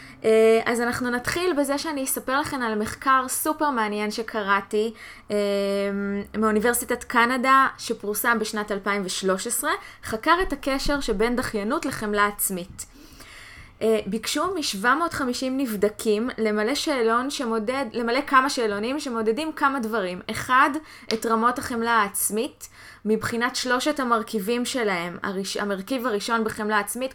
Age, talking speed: 20-39, 110 wpm